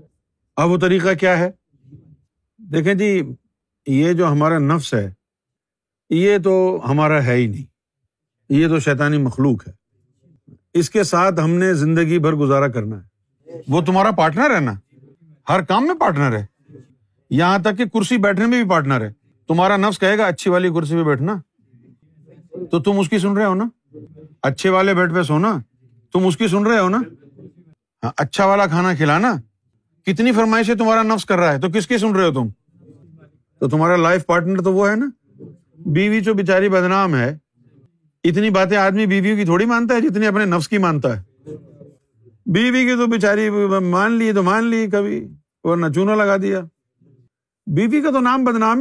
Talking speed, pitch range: 175 wpm, 145-200 Hz